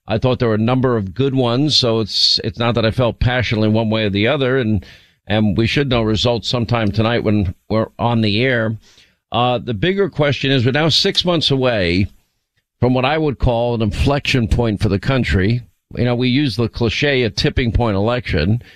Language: English